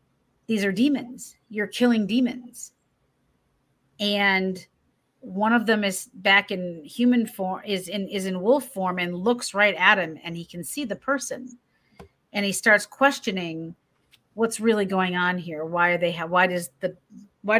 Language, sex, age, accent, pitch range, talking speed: English, female, 40-59, American, 170-205 Hz, 165 wpm